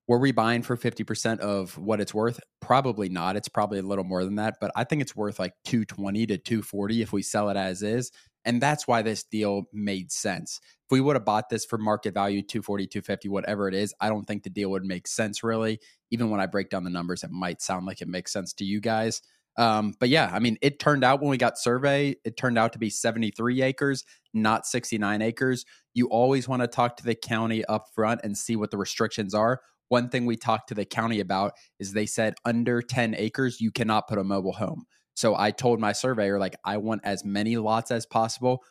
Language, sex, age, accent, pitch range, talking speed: English, male, 20-39, American, 100-115 Hz, 235 wpm